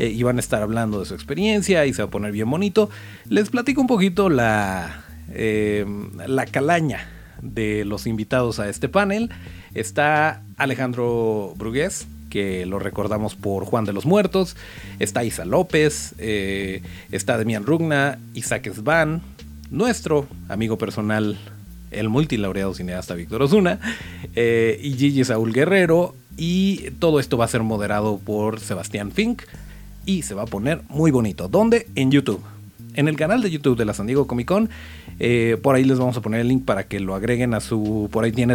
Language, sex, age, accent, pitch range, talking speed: Spanish, male, 40-59, Mexican, 105-140 Hz, 175 wpm